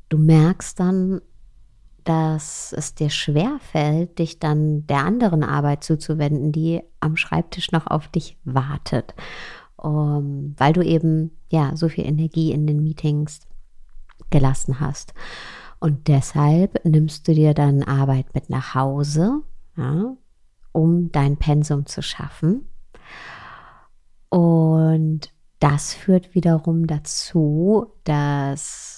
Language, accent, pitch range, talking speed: German, German, 150-170 Hz, 115 wpm